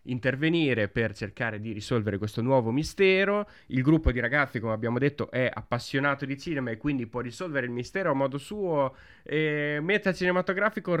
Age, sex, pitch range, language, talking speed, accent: 20-39, male, 115-150 Hz, Italian, 160 wpm, native